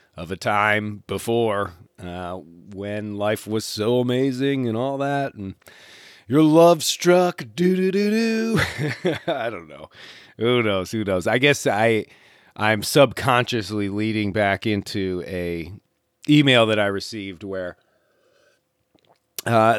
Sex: male